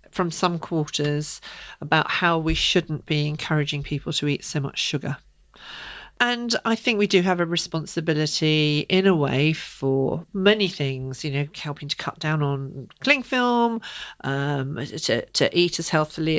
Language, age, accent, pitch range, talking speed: English, 40-59, British, 160-210 Hz, 160 wpm